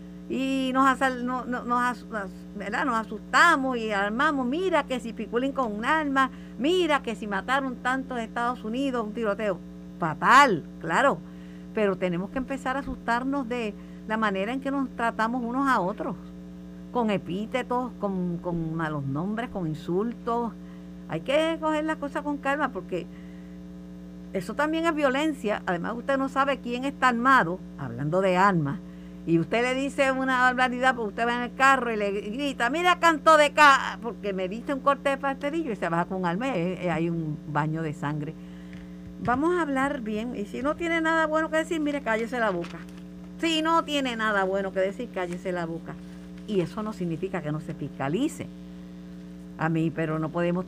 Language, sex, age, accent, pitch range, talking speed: Spanish, female, 50-69, American, 165-265 Hz, 180 wpm